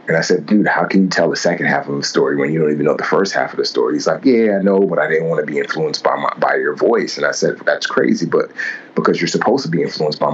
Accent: American